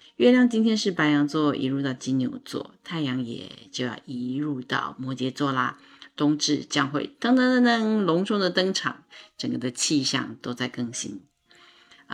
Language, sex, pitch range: Chinese, female, 140-180 Hz